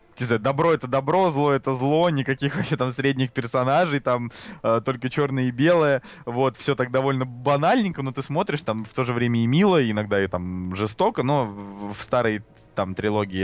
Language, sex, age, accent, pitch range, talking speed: Russian, male, 20-39, native, 105-135 Hz, 185 wpm